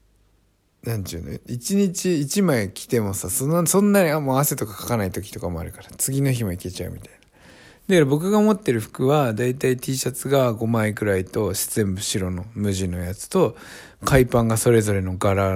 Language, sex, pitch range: Japanese, male, 95-125 Hz